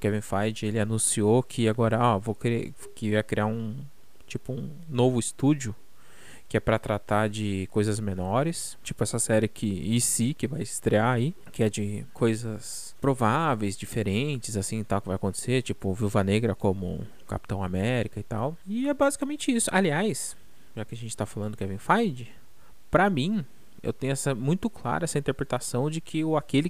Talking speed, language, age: 175 wpm, Portuguese, 20-39